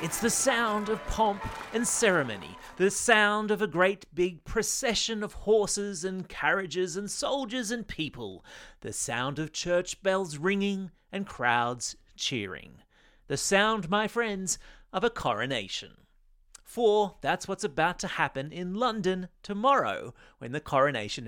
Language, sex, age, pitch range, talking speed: English, male, 30-49, 150-210 Hz, 140 wpm